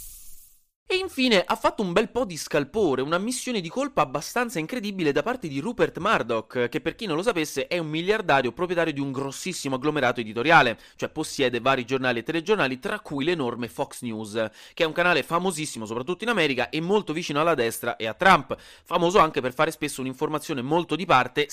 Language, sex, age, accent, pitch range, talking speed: Italian, male, 30-49, native, 130-200 Hz, 200 wpm